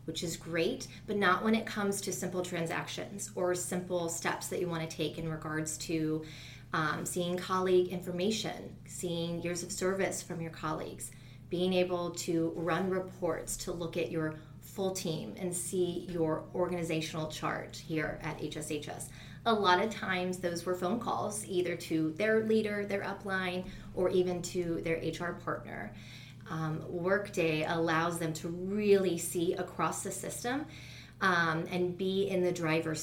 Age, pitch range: 30-49, 160-180 Hz